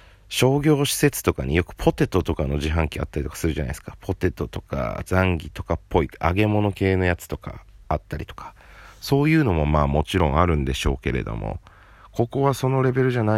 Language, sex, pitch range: Japanese, male, 80-100 Hz